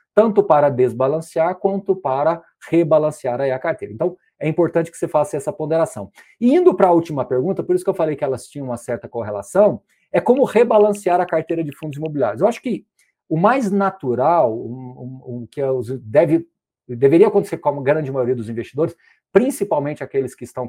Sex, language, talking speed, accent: male, Portuguese, 175 wpm, Brazilian